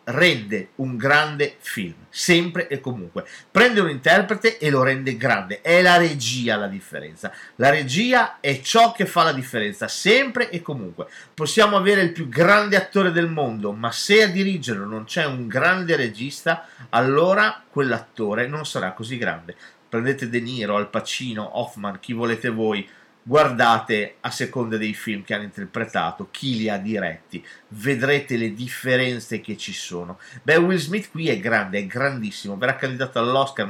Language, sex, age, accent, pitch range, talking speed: Italian, male, 40-59, native, 115-175 Hz, 160 wpm